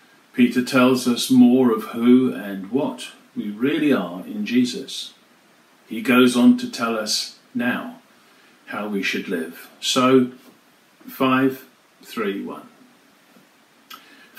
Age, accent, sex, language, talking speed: 50-69, British, male, English, 110 wpm